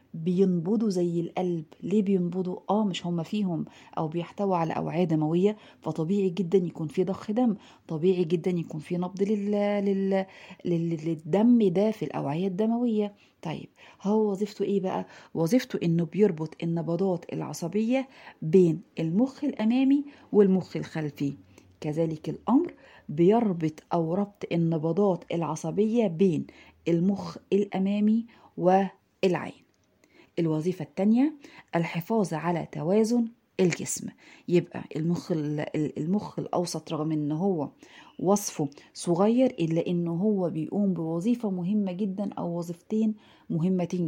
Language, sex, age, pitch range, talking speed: Arabic, female, 40-59, 165-210 Hz, 115 wpm